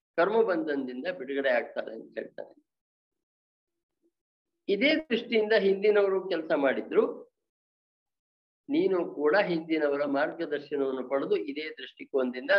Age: 50-69